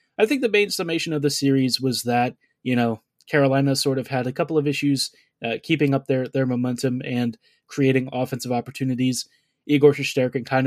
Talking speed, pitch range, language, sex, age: 185 wpm, 125-145 Hz, English, male, 20-39